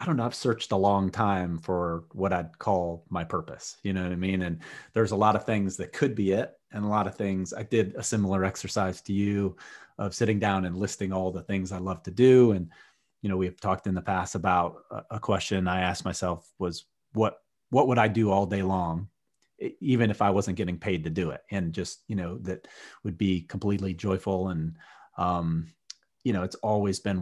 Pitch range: 90-105 Hz